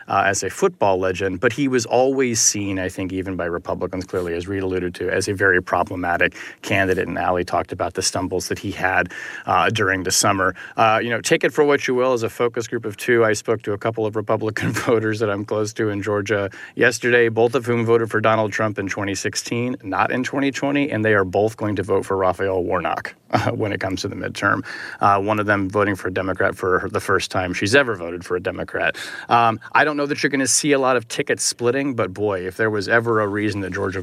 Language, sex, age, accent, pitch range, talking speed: English, male, 30-49, American, 95-115 Hz, 245 wpm